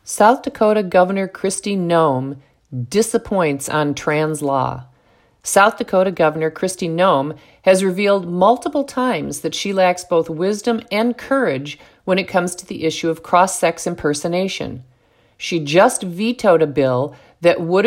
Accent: American